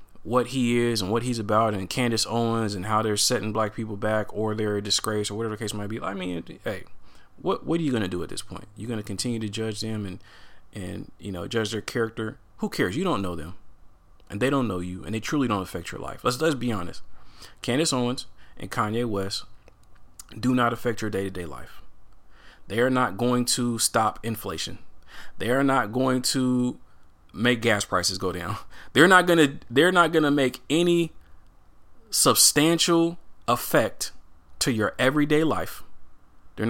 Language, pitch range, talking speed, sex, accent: English, 95-125 Hz, 195 wpm, male, American